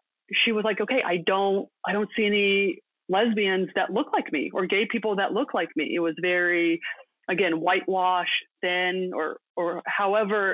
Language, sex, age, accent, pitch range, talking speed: English, female, 30-49, American, 180-220 Hz, 175 wpm